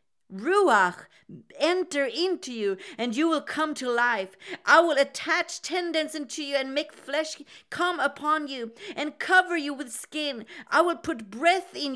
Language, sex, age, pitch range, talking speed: English, female, 40-59, 245-315 Hz, 160 wpm